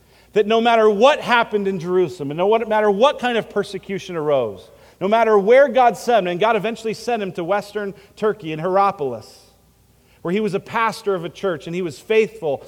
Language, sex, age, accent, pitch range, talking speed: English, male, 40-59, American, 180-230 Hz, 205 wpm